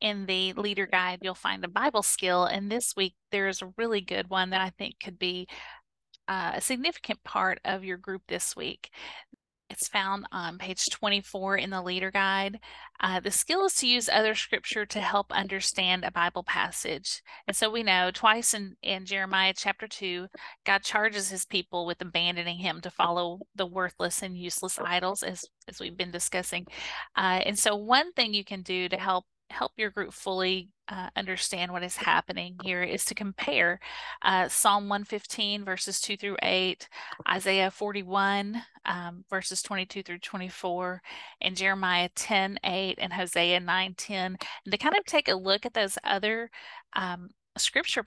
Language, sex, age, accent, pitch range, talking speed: English, female, 30-49, American, 185-205 Hz, 175 wpm